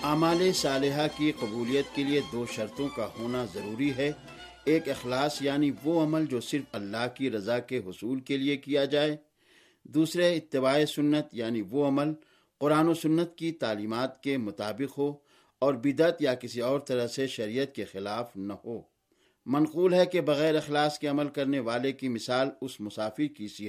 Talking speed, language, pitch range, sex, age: 170 wpm, Urdu, 130-160 Hz, male, 50-69